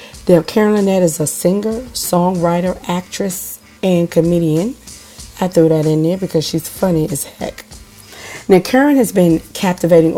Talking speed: 145 wpm